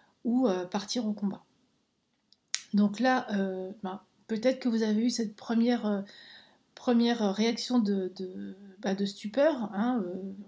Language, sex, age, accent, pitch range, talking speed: French, female, 30-49, French, 200-250 Hz, 135 wpm